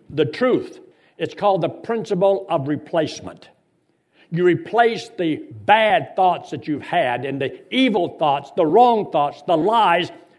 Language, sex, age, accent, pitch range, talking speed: English, male, 60-79, American, 150-200 Hz, 145 wpm